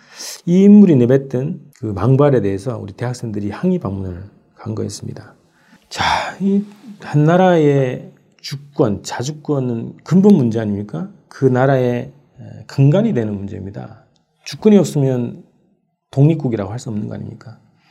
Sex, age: male, 40-59